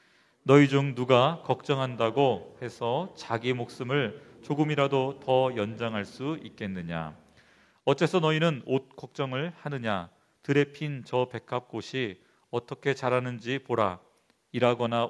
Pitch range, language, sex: 115-140 Hz, Korean, male